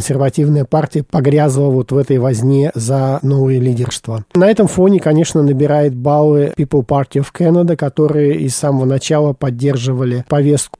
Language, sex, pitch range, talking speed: Russian, male, 135-155 Hz, 145 wpm